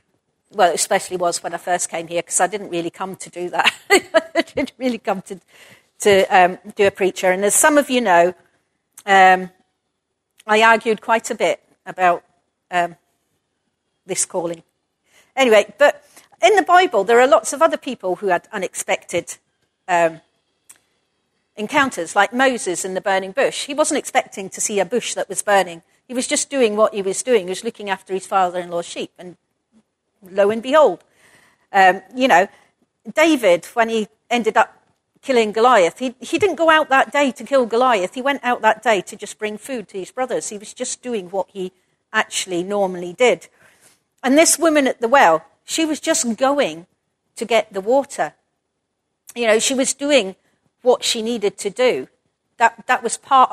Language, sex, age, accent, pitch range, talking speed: English, female, 50-69, British, 190-265 Hz, 185 wpm